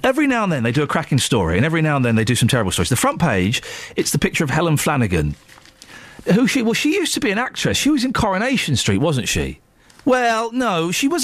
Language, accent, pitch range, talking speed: English, British, 115-190 Hz, 255 wpm